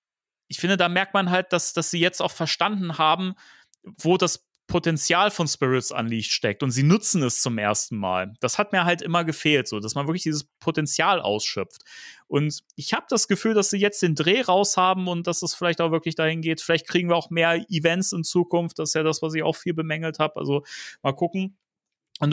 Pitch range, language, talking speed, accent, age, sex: 140-175 Hz, German, 225 wpm, German, 30-49, male